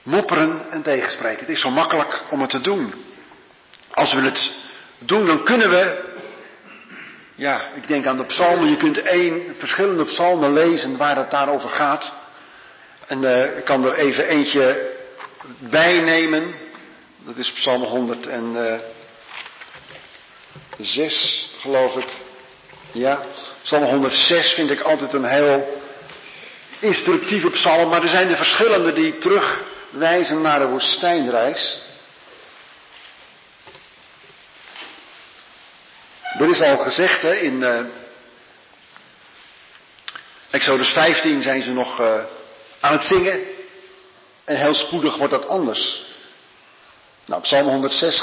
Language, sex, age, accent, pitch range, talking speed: Dutch, male, 50-69, Dutch, 135-185 Hz, 115 wpm